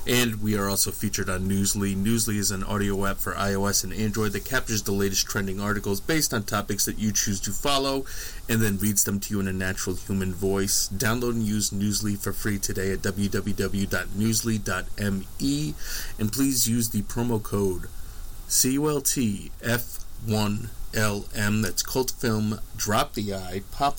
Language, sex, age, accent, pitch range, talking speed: English, male, 30-49, American, 95-110 Hz, 160 wpm